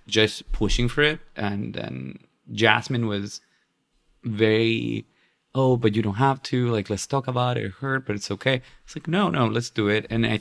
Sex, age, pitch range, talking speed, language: male, 20-39, 100-115 Hz, 195 wpm, English